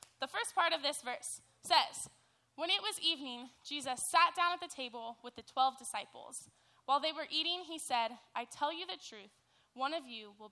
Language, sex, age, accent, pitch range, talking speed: English, female, 10-29, American, 230-320 Hz, 205 wpm